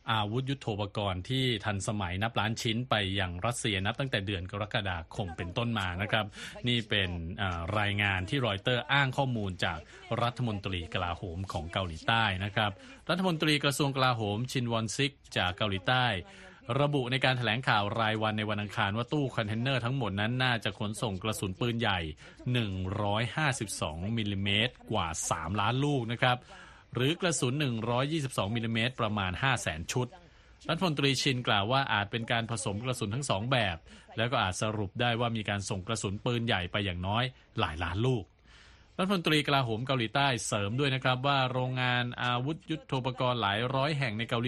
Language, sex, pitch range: Thai, male, 100-125 Hz